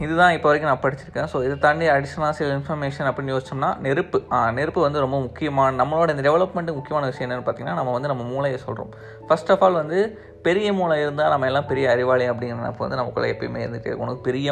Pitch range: 125-150 Hz